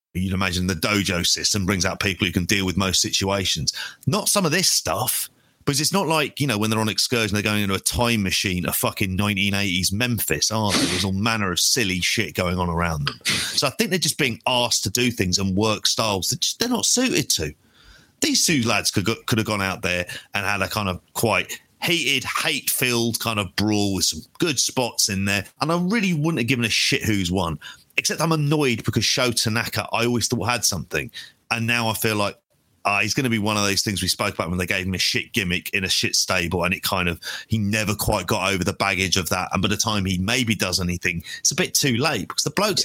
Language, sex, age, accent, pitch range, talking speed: English, male, 30-49, British, 95-125 Hz, 245 wpm